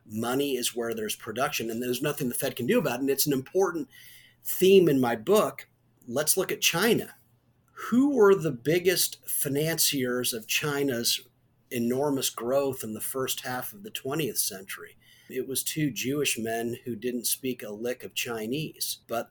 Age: 40-59